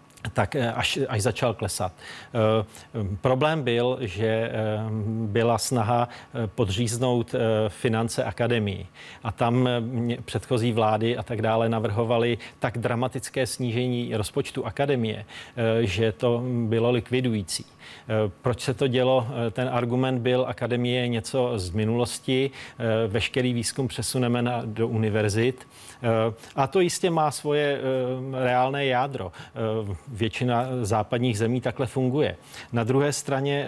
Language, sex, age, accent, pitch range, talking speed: Czech, male, 40-59, native, 115-130 Hz, 110 wpm